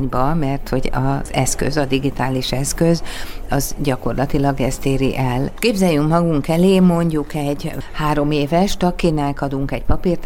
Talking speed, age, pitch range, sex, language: 135 wpm, 50-69, 130-160 Hz, female, Hungarian